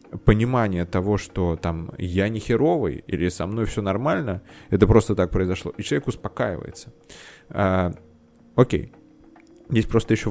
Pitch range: 95-115 Hz